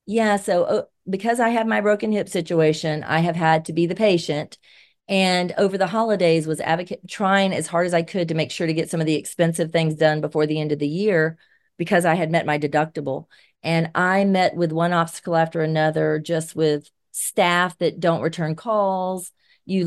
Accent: American